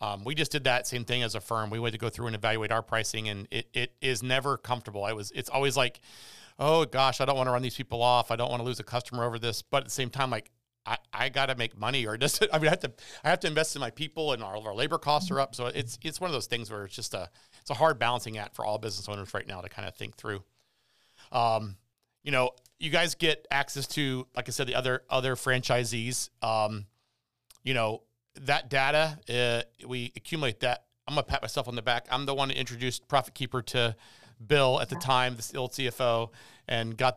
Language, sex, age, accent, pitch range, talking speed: English, male, 40-59, American, 115-135 Hz, 255 wpm